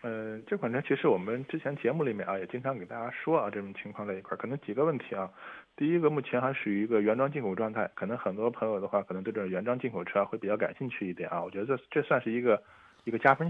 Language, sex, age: Chinese, male, 20-39